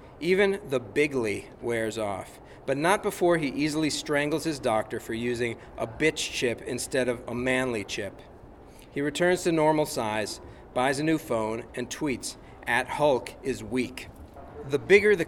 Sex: male